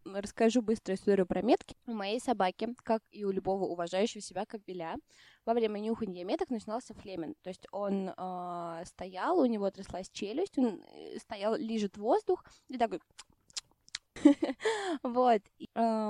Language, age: Russian, 20-39